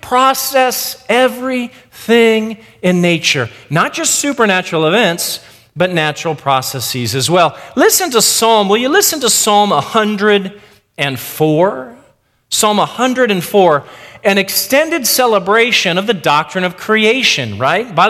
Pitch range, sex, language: 150-245 Hz, male, English